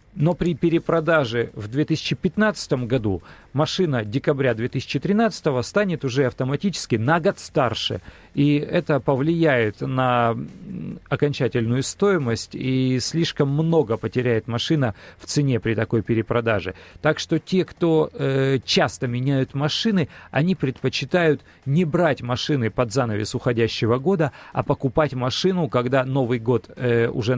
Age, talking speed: 40-59, 125 wpm